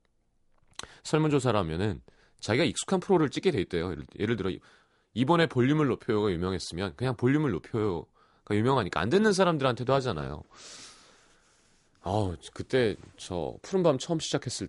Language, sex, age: Korean, male, 30-49